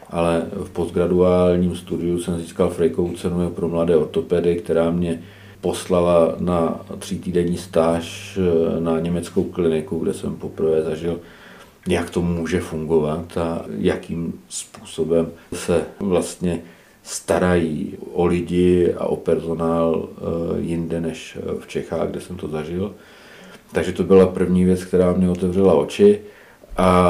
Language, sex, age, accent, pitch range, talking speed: Czech, male, 40-59, native, 85-95 Hz, 125 wpm